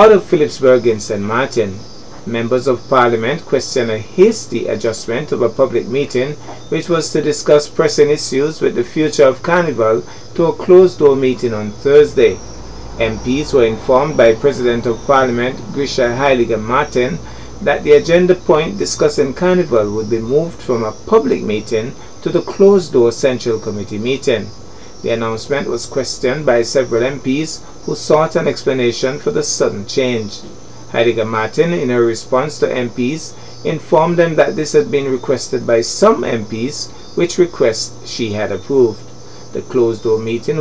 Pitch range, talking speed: 110-150 Hz, 150 wpm